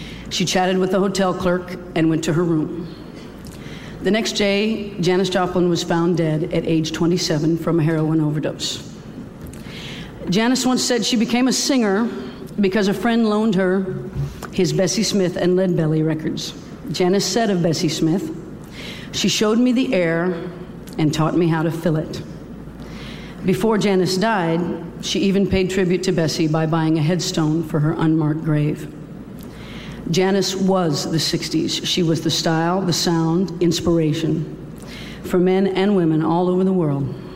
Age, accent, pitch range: 50-69, American, 160-190 Hz